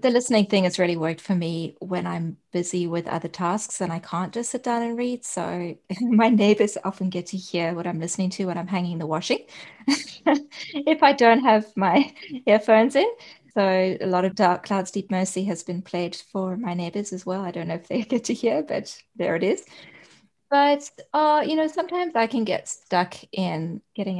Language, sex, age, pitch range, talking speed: English, female, 20-39, 170-210 Hz, 210 wpm